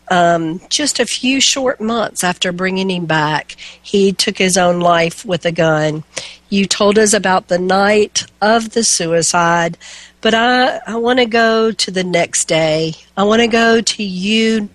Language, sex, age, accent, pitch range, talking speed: English, female, 50-69, American, 175-225 Hz, 175 wpm